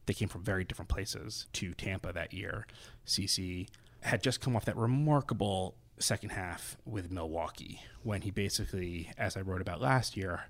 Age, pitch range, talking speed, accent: 20-39, 95-115 Hz, 170 wpm, American